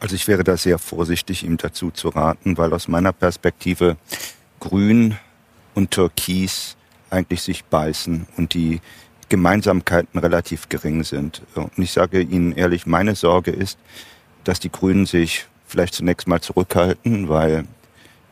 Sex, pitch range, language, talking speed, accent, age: male, 85-95 Hz, German, 145 wpm, German, 40-59